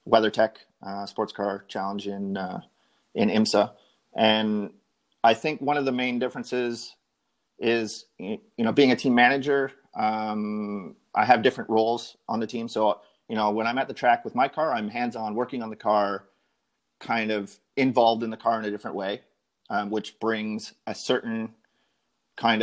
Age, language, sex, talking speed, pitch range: 30-49, English, male, 175 wpm, 105-120 Hz